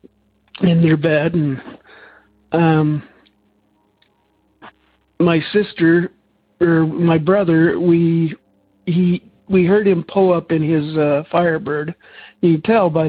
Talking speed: 115 wpm